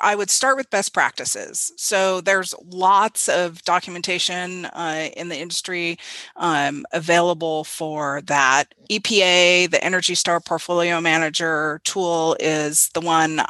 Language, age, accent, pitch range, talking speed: English, 30-49, American, 165-200 Hz, 130 wpm